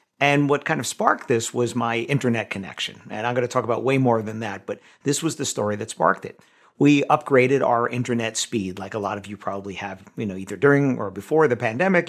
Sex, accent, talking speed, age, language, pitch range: male, American, 235 wpm, 50-69, English, 105-140 Hz